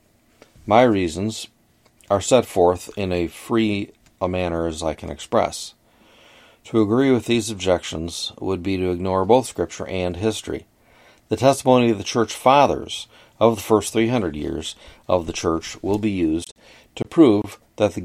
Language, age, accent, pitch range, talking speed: English, 40-59, American, 95-115 Hz, 160 wpm